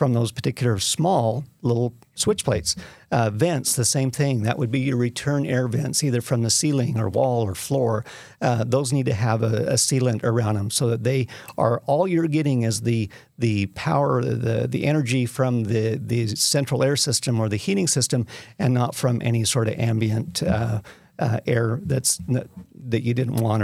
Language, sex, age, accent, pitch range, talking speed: English, male, 50-69, American, 115-145 Hz, 195 wpm